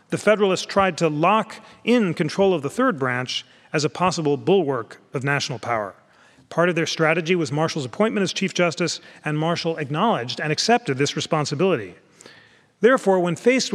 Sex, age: male, 40-59